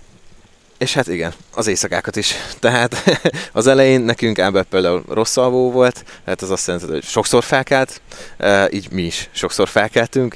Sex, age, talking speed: male, 30-49, 155 wpm